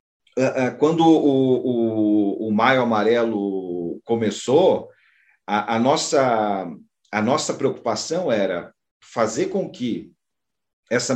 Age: 50-69